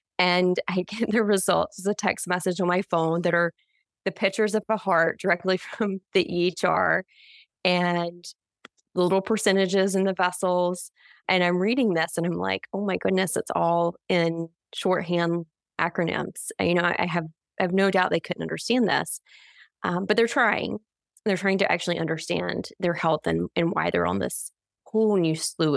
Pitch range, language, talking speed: 170-205 Hz, English, 180 wpm